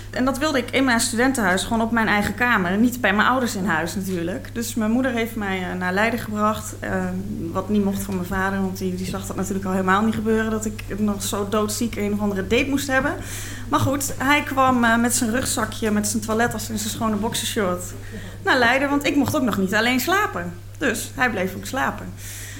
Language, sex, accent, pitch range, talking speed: Dutch, female, Dutch, 190-260 Hz, 225 wpm